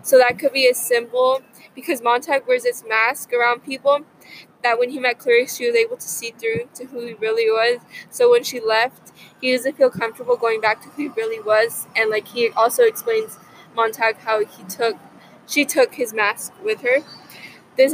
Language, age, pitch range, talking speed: English, 20-39, 230-285 Hz, 200 wpm